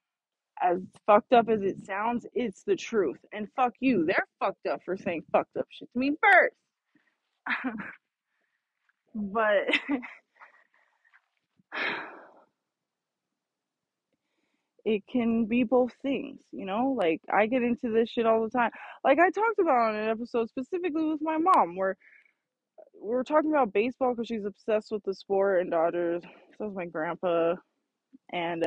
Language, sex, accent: English, female, American